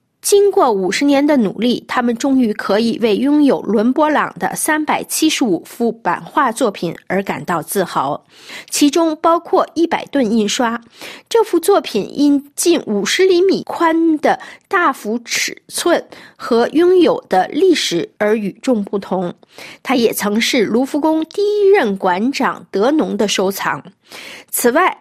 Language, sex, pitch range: Chinese, female, 215-335 Hz